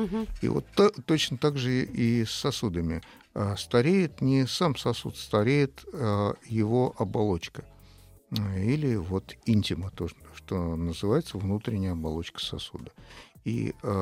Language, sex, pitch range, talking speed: Russian, male, 90-115 Hz, 105 wpm